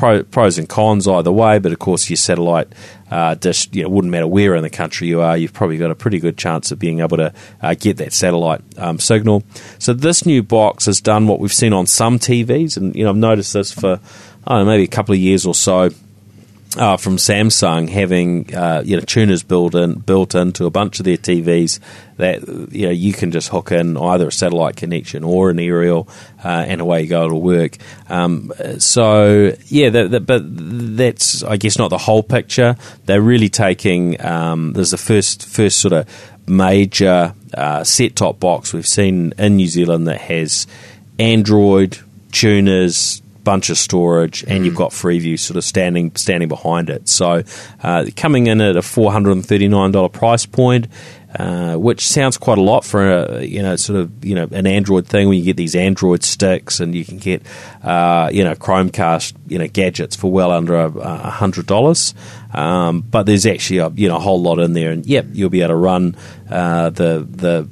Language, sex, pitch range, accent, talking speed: English, male, 85-105 Hz, Australian, 205 wpm